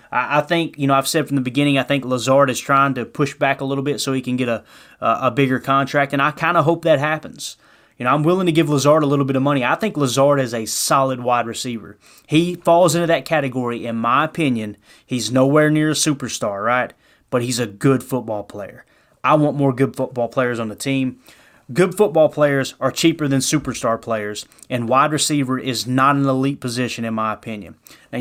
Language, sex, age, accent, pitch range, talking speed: English, male, 30-49, American, 120-145 Hz, 220 wpm